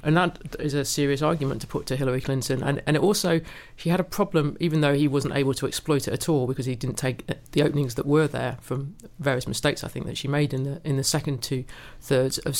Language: English